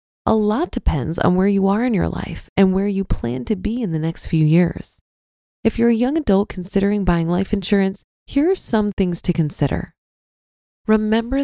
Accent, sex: American, female